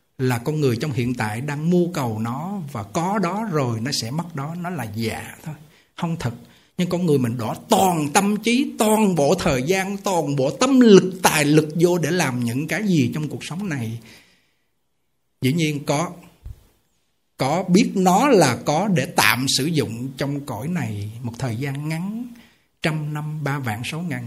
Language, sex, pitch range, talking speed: Vietnamese, male, 130-195 Hz, 190 wpm